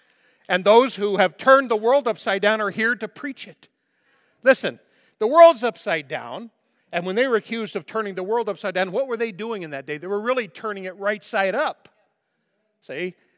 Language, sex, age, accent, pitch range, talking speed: English, male, 50-69, American, 140-205 Hz, 205 wpm